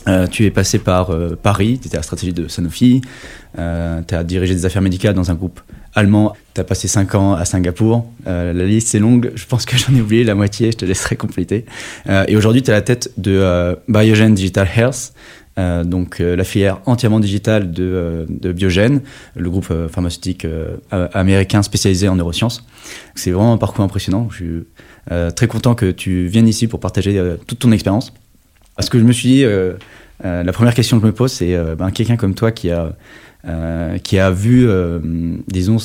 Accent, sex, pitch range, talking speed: French, male, 90-110 Hz, 220 wpm